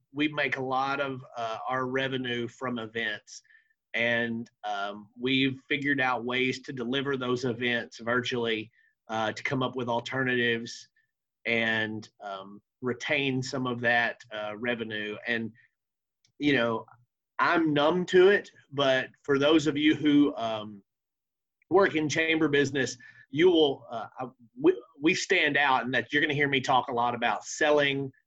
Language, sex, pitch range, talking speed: English, male, 115-140 Hz, 155 wpm